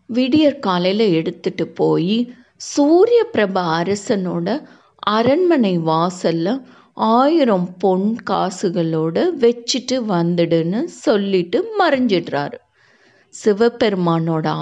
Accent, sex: native, female